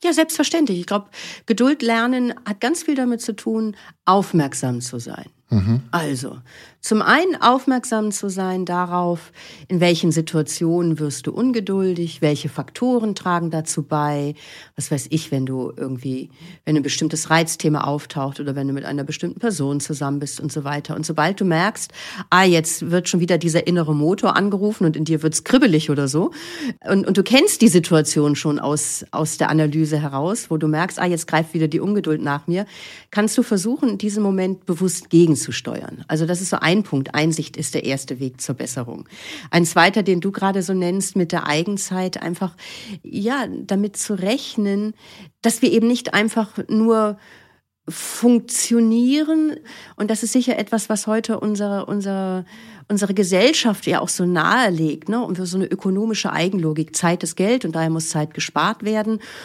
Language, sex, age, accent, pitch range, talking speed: German, female, 50-69, German, 155-215 Hz, 175 wpm